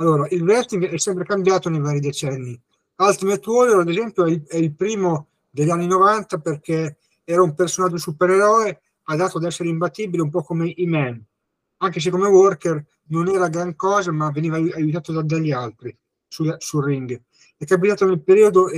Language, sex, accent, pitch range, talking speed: Italian, male, native, 155-185 Hz, 170 wpm